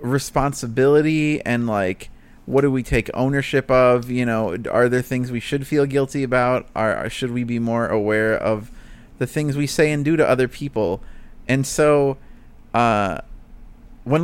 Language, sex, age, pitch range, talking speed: English, male, 30-49, 115-135 Hz, 165 wpm